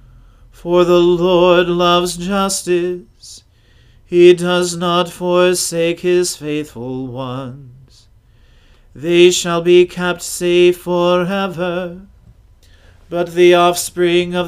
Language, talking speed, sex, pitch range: English, 90 wpm, male, 130-180 Hz